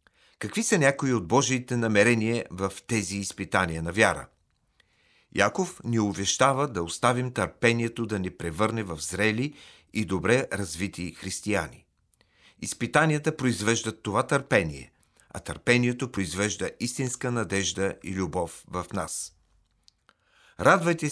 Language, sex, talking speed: Bulgarian, male, 115 wpm